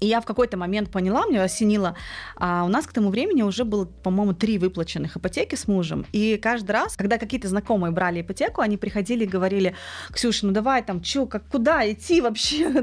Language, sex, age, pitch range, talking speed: Russian, female, 30-49, 185-230 Hz, 195 wpm